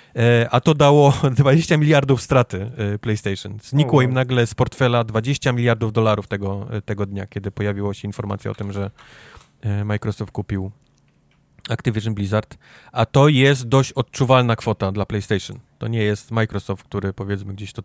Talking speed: 150 wpm